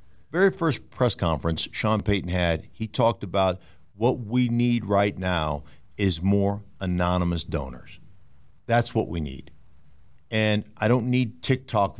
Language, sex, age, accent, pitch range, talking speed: English, male, 50-69, American, 80-110 Hz, 140 wpm